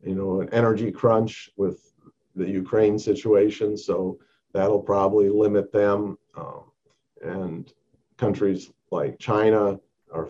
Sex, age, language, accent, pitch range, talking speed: male, 50-69, English, American, 95-110 Hz, 115 wpm